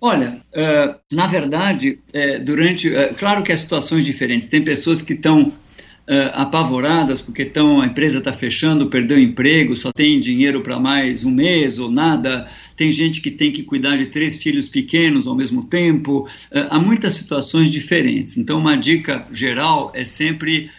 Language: Portuguese